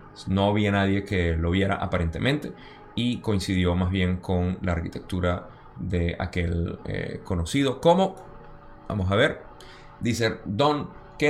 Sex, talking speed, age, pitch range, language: male, 135 wpm, 20-39, 90-120 Hz, Spanish